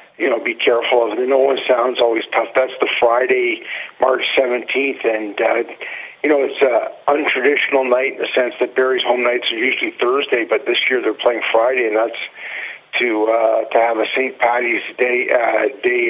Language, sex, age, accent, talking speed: English, male, 50-69, American, 200 wpm